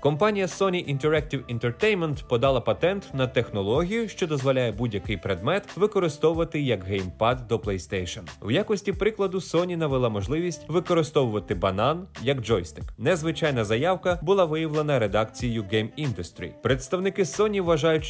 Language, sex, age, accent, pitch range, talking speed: Ukrainian, male, 20-39, native, 110-170 Hz, 125 wpm